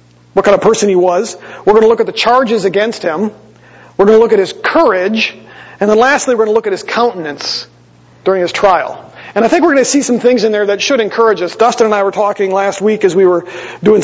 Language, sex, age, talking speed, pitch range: English, male, 40-59, 260 wpm, 180-235 Hz